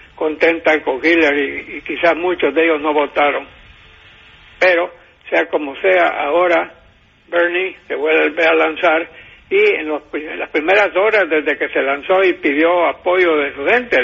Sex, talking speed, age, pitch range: male, 160 wpm, 60-79, 150-190 Hz